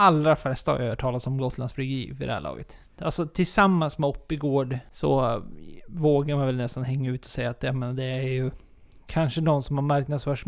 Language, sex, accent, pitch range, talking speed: Swedish, male, native, 135-170 Hz, 195 wpm